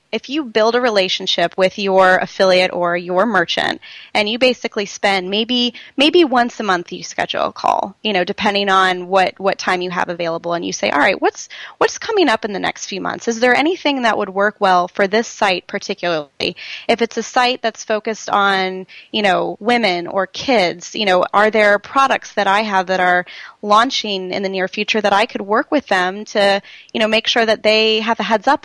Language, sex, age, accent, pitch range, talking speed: English, female, 20-39, American, 190-235 Hz, 215 wpm